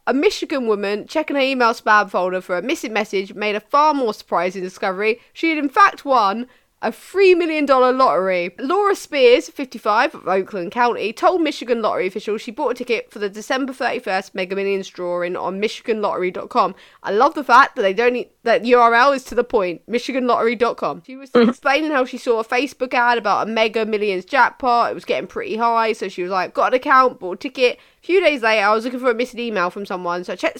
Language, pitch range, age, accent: English, 195-265 Hz, 20-39, British